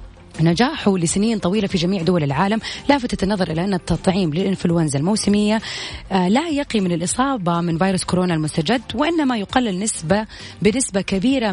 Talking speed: 140 wpm